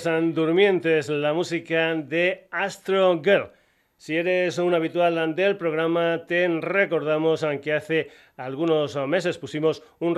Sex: male